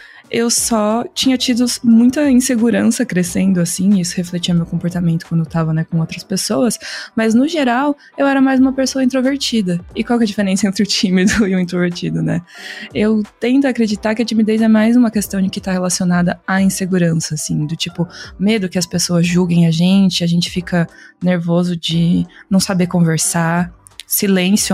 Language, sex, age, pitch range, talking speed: Portuguese, female, 20-39, 175-225 Hz, 185 wpm